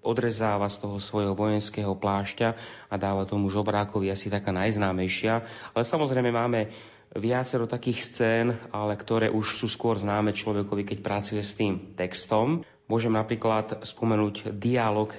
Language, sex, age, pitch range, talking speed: Slovak, male, 30-49, 100-115 Hz, 140 wpm